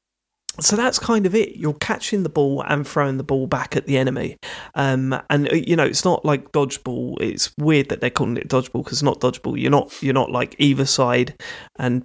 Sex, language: male, English